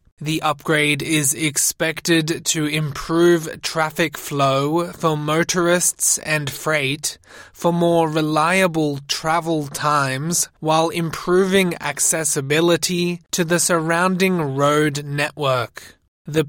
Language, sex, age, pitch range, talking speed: English, male, 20-39, 145-165 Hz, 95 wpm